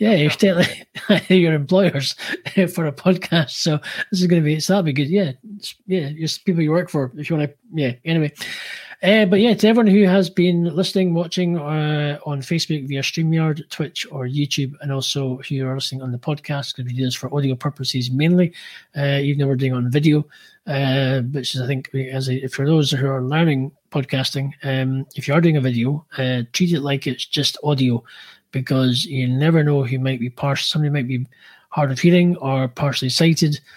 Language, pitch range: English, 125-155 Hz